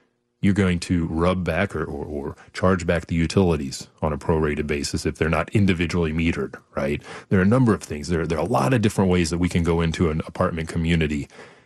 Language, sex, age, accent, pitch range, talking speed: English, male, 30-49, American, 80-100 Hz, 225 wpm